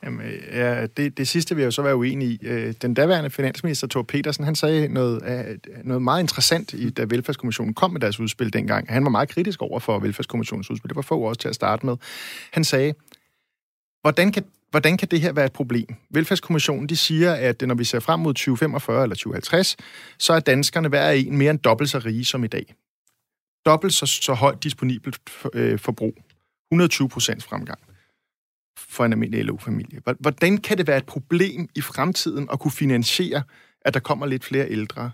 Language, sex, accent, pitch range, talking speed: Danish, male, native, 125-170 Hz, 190 wpm